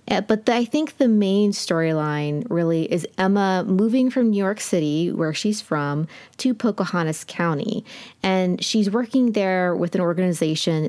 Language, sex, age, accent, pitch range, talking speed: English, female, 20-39, American, 160-205 Hz, 150 wpm